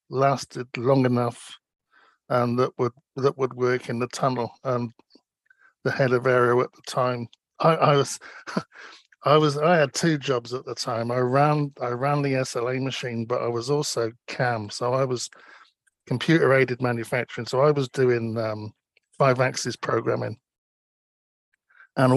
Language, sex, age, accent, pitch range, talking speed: English, male, 50-69, British, 120-145 Hz, 160 wpm